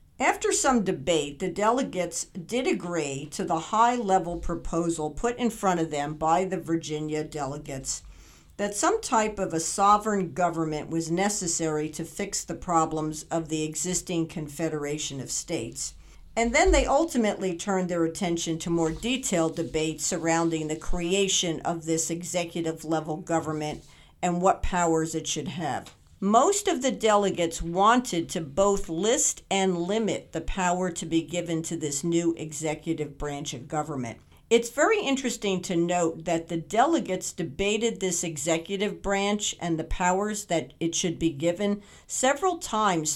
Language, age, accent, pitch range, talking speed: English, 50-69, American, 160-200 Hz, 150 wpm